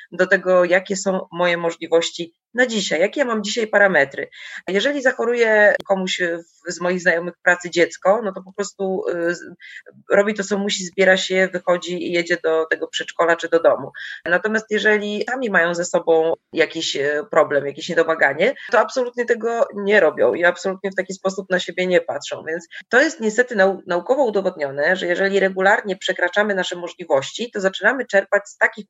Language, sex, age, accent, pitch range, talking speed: Polish, female, 30-49, native, 170-205 Hz, 170 wpm